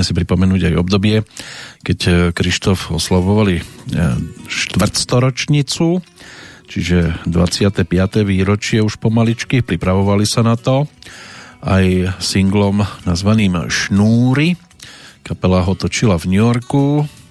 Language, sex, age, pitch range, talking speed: Slovak, male, 40-59, 90-115 Hz, 95 wpm